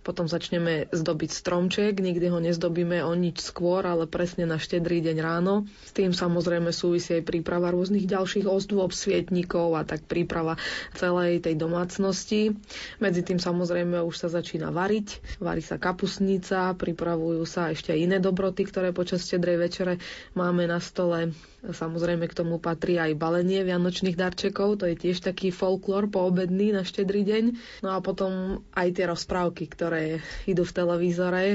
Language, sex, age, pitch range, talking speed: Slovak, female, 20-39, 170-185 Hz, 155 wpm